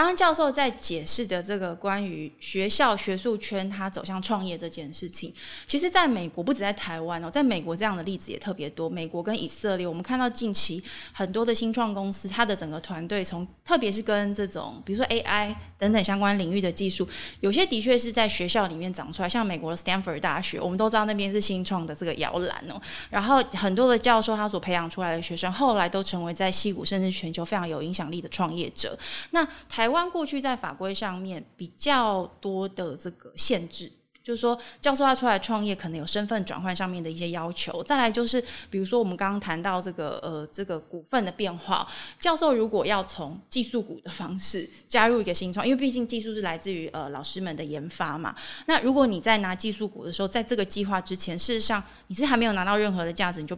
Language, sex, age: Chinese, female, 20-39